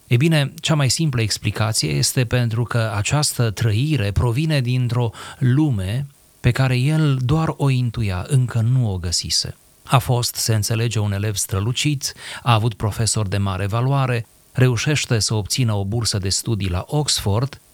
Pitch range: 105-130 Hz